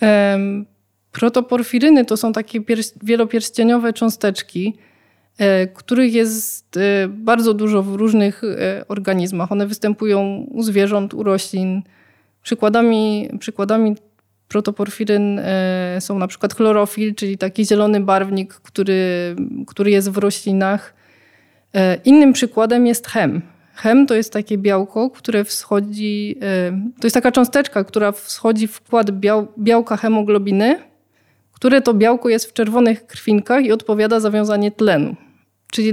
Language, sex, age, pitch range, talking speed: Polish, female, 20-39, 195-230 Hz, 115 wpm